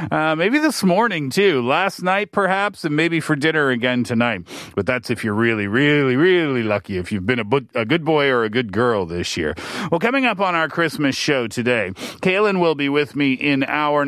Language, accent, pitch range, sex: Korean, American, 130-190 Hz, male